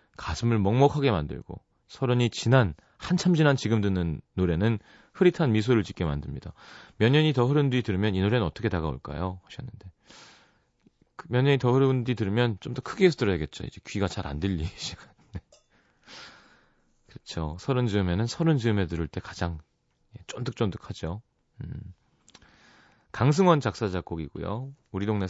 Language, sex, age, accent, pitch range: Korean, male, 30-49, native, 90-125 Hz